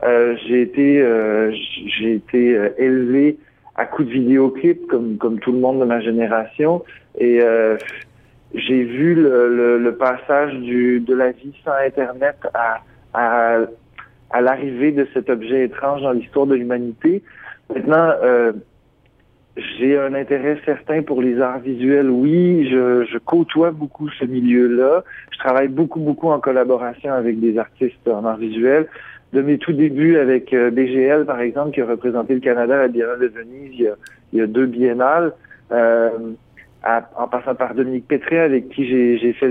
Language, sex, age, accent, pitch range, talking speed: French, male, 50-69, French, 120-145 Hz, 170 wpm